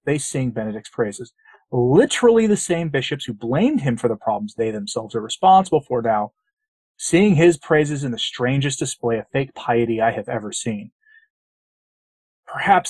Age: 30-49